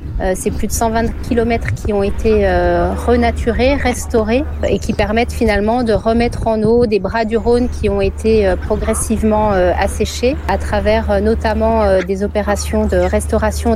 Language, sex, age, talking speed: French, female, 40-59, 150 wpm